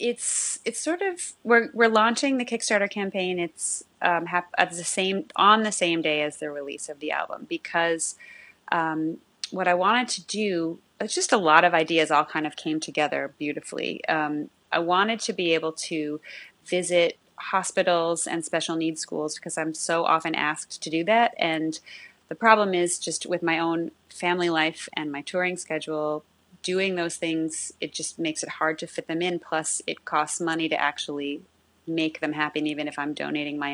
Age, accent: 30-49, American